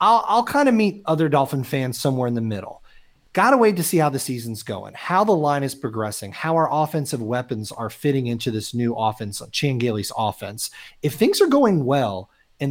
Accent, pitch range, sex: American, 120-160 Hz, male